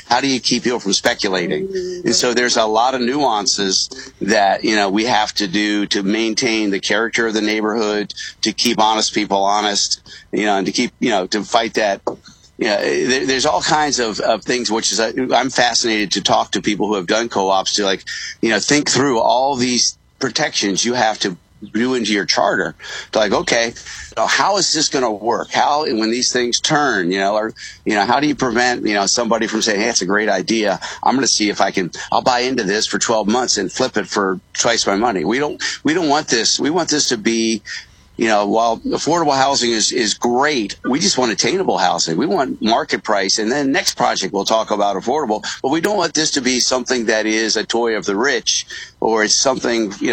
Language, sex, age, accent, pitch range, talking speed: English, male, 50-69, American, 105-125 Hz, 225 wpm